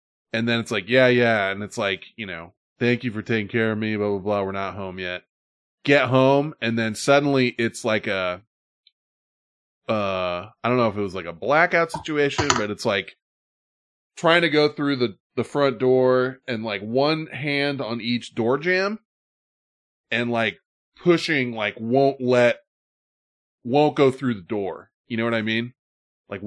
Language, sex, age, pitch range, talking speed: English, male, 20-39, 110-165 Hz, 180 wpm